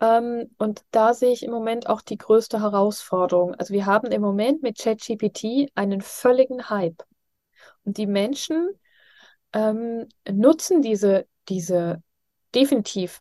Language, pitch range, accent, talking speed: German, 195-250 Hz, German, 125 wpm